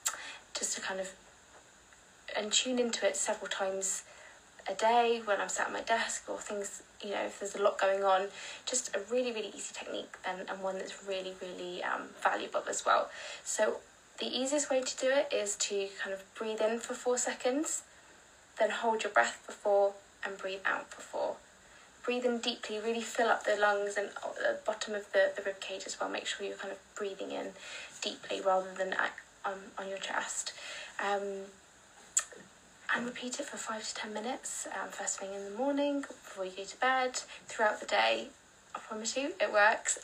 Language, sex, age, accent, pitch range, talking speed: English, female, 20-39, British, 195-245 Hz, 195 wpm